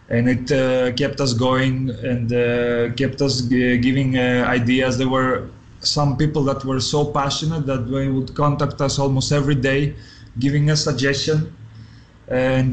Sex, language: male, English